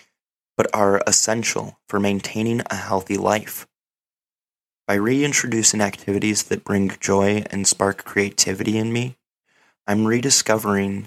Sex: male